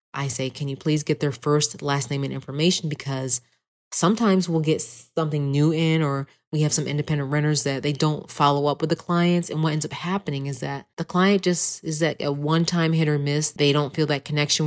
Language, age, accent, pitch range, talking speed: English, 30-49, American, 145-170 Hz, 225 wpm